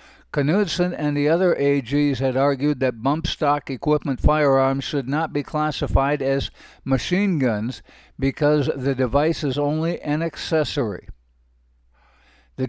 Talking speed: 130 wpm